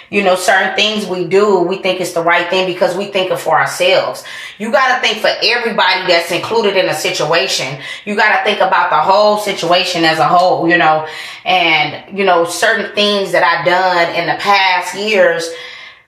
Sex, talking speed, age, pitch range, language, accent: female, 200 wpm, 20-39, 170-200 Hz, English, American